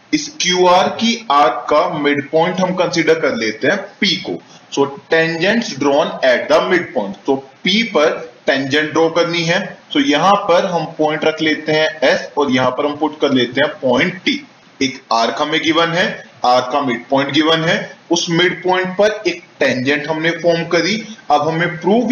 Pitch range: 145-195 Hz